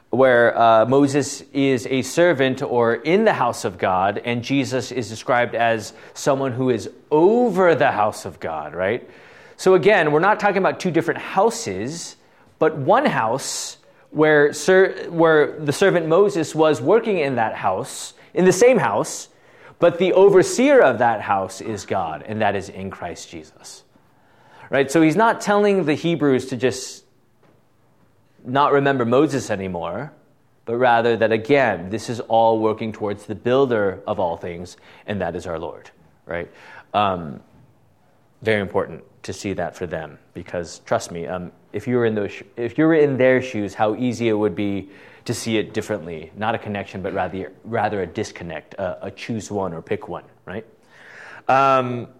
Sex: male